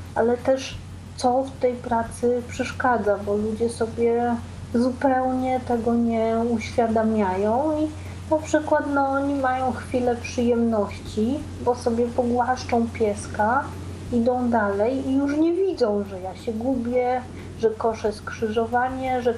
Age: 30-49